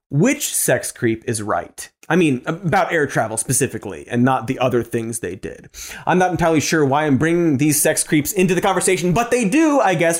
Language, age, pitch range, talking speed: English, 30-49, 130-205 Hz, 210 wpm